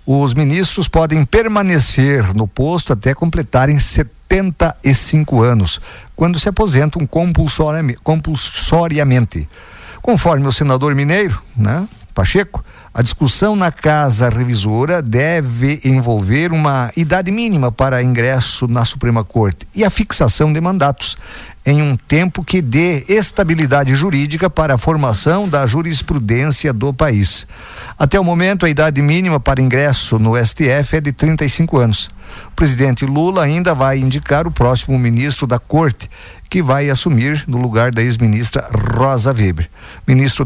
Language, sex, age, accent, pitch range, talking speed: Portuguese, male, 50-69, Brazilian, 120-160 Hz, 130 wpm